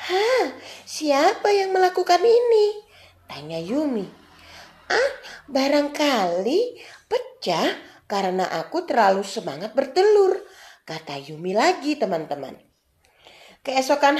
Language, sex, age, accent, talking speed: Indonesian, female, 30-49, native, 85 wpm